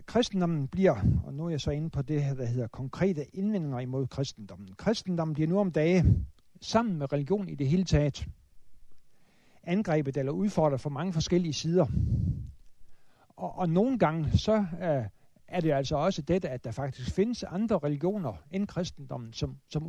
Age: 60-79